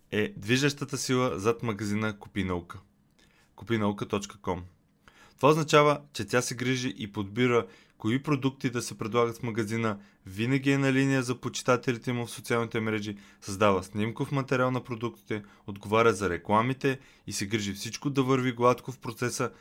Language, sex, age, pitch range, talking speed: Bulgarian, male, 20-39, 100-125 Hz, 150 wpm